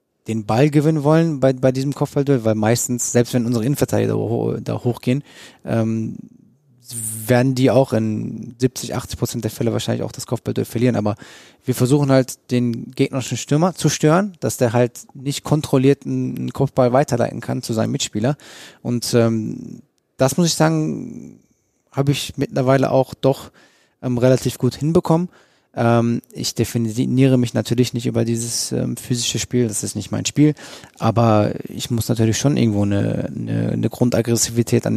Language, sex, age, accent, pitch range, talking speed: German, male, 20-39, German, 110-130 Hz, 160 wpm